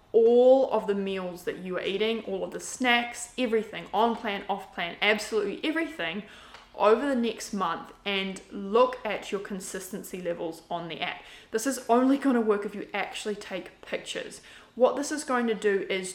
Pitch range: 190-240 Hz